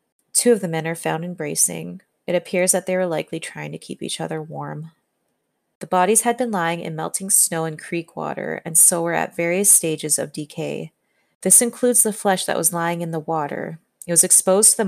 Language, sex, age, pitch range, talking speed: English, female, 30-49, 155-185 Hz, 215 wpm